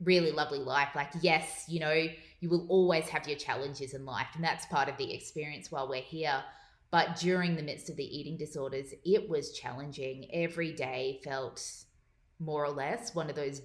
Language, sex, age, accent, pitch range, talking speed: English, female, 20-39, Australian, 140-170 Hz, 195 wpm